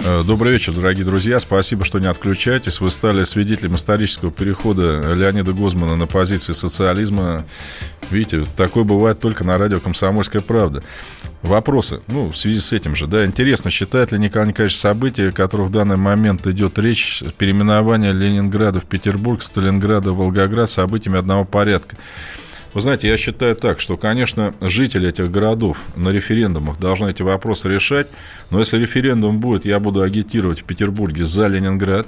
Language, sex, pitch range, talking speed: Russian, male, 95-110 Hz, 155 wpm